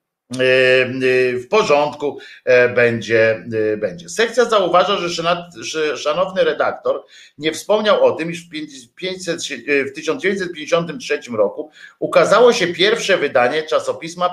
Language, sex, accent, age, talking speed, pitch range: Polish, male, native, 50-69, 100 wpm, 115-180 Hz